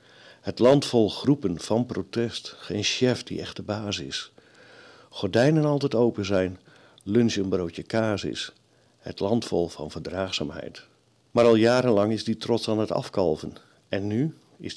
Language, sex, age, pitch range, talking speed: Dutch, male, 50-69, 95-115 Hz, 160 wpm